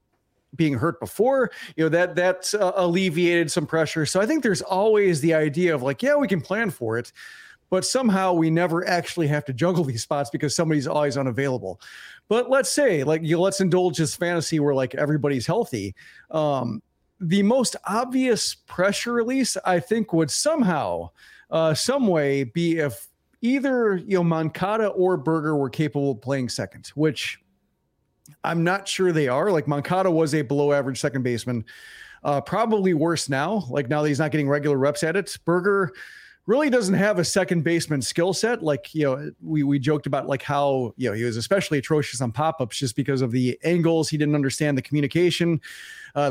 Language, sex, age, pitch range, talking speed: English, male, 40-59, 145-185 Hz, 190 wpm